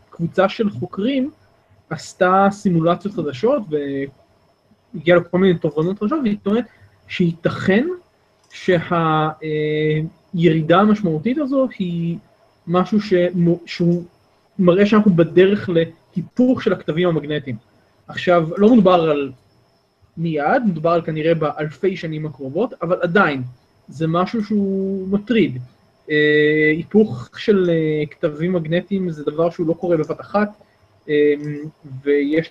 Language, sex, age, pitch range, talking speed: Hebrew, male, 20-39, 155-190 Hz, 100 wpm